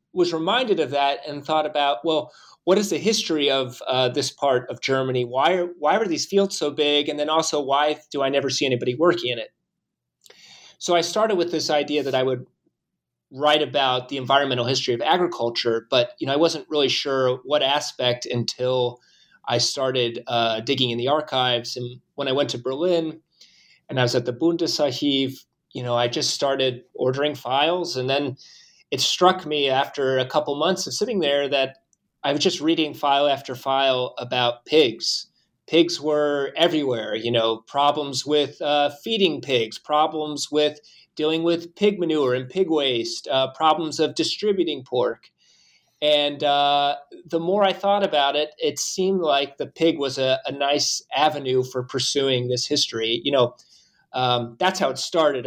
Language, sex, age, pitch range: English, male, 30-49, 130-155 Hz